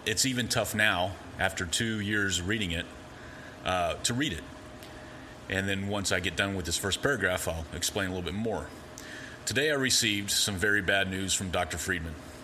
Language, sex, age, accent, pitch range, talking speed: English, male, 30-49, American, 95-120 Hz, 190 wpm